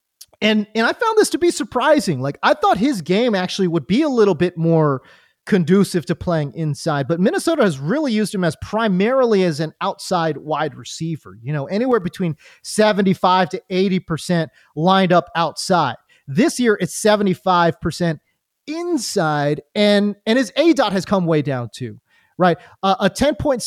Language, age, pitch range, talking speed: English, 30-49, 165-230 Hz, 175 wpm